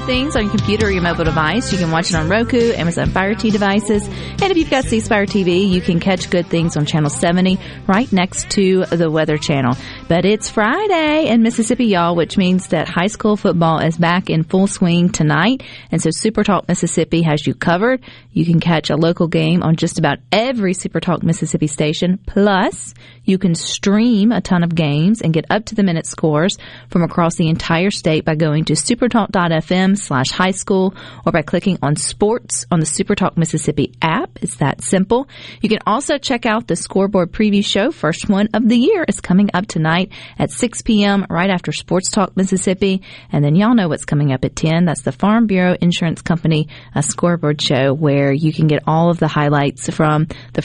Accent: American